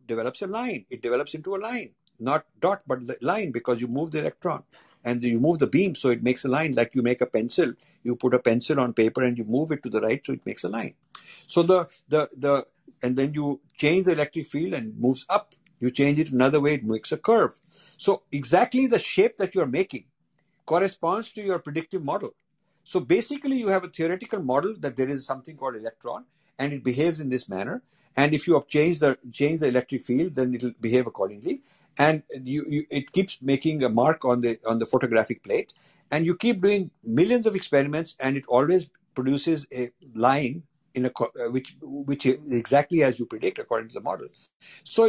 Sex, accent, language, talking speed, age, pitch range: male, native, Hindi, 210 wpm, 50-69, 130-185 Hz